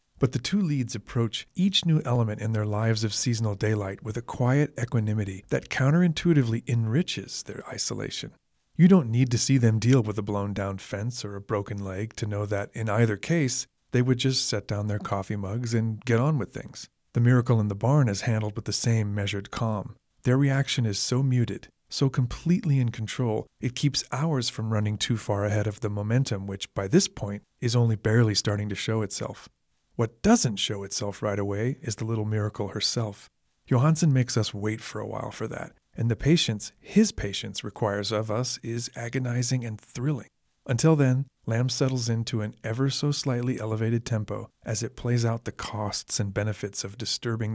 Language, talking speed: English, 195 wpm